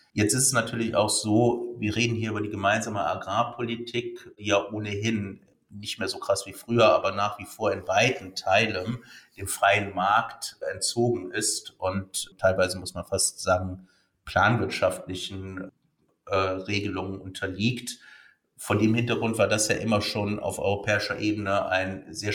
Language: German